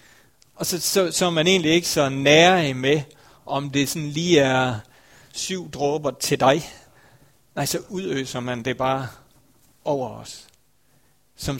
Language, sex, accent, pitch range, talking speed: Danish, male, native, 125-150 Hz, 150 wpm